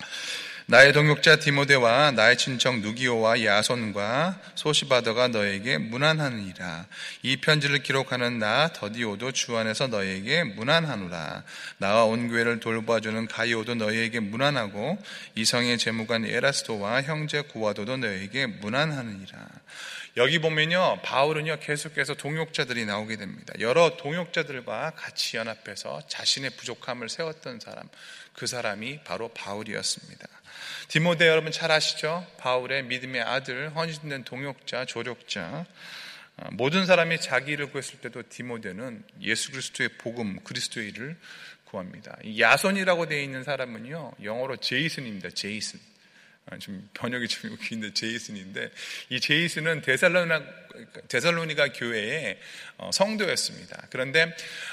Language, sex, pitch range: Korean, male, 115-160 Hz